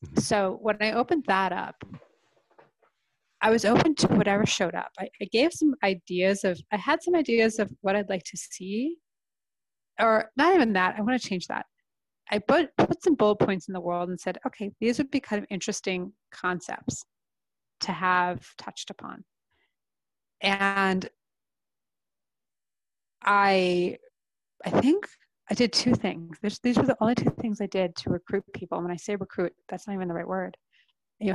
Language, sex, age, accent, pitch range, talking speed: English, female, 30-49, American, 185-230 Hz, 180 wpm